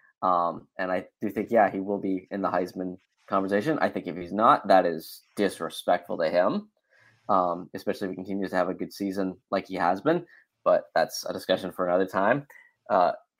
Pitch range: 100-115 Hz